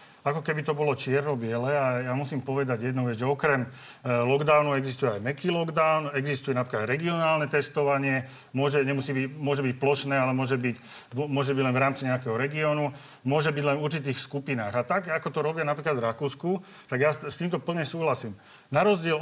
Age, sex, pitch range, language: 40-59, male, 135-155 Hz, Slovak